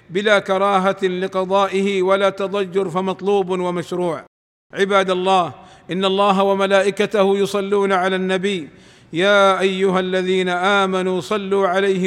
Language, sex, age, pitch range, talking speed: Arabic, male, 50-69, 185-200 Hz, 105 wpm